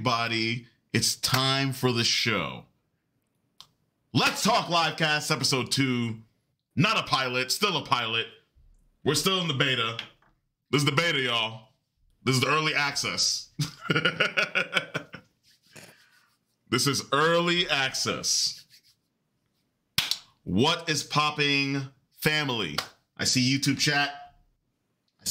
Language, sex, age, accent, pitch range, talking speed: English, male, 30-49, American, 115-150 Hz, 110 wpm